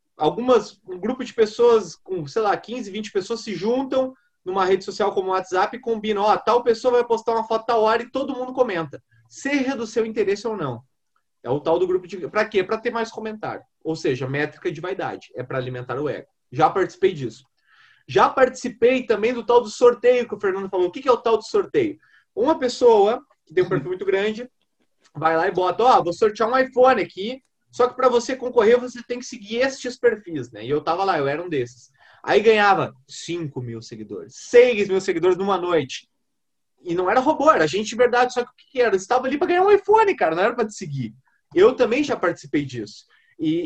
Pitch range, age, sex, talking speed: 185-260 Hz, 20-39, male, 225 wpm